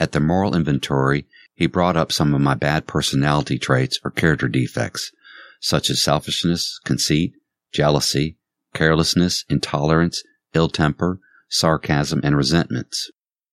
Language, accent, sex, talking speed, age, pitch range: English, American, male, 120 wpm, 50-69, 65-85 Hz